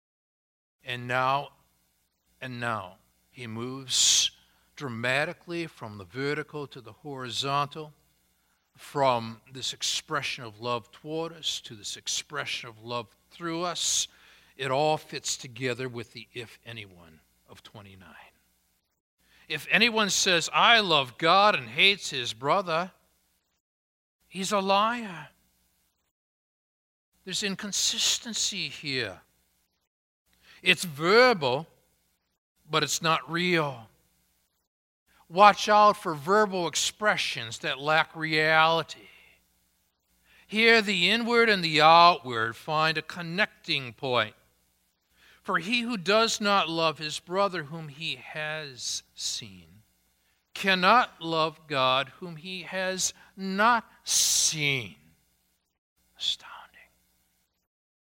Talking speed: 100 wpm